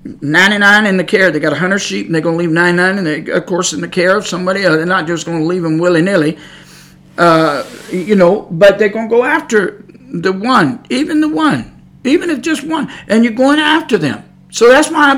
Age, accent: 50-69, American